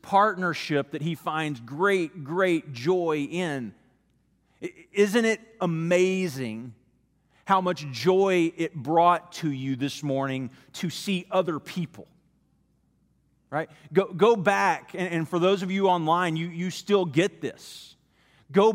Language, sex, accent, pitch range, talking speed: English, male, American, 155-195 Hz, 130 wpm